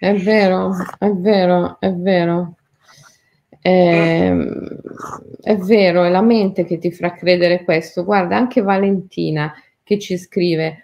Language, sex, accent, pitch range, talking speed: Italian, female, native, 165-190 Hz, 125 wpm